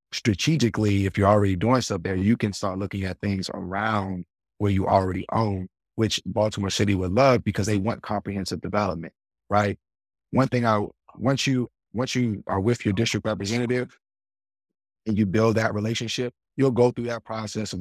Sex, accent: male, American